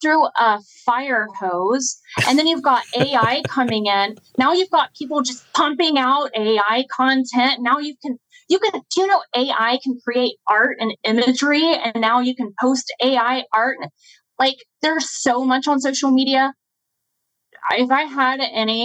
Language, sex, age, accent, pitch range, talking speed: English, female, 20-39, American, 215-265 Hz, 160 wpm